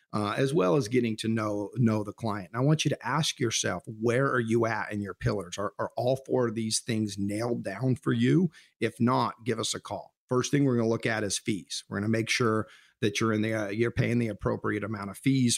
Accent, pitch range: American, 105-125 Hz